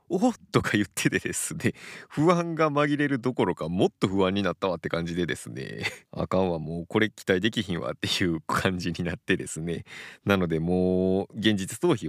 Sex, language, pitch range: male, Japanese, 85-115 Hz